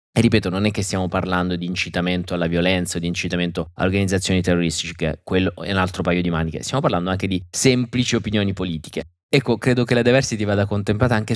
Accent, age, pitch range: native, 20-39, 95-120 Hz